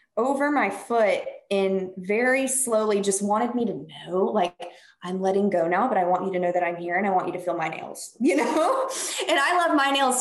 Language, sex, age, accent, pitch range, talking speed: English, female, 20-39, American, 190-275 Hz, 235 wpm